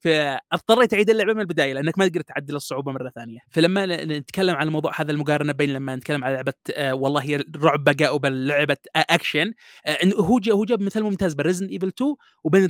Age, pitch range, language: 20-39, 150-195 Hz, Arabic